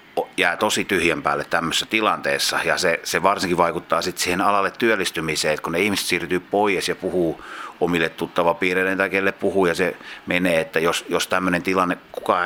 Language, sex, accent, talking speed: Finnish, male, native, 180 wpm